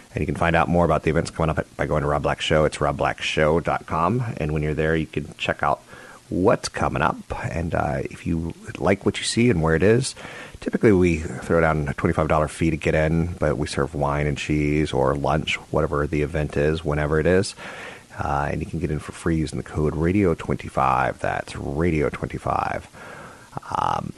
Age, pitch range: 30-49, 75-95 Hz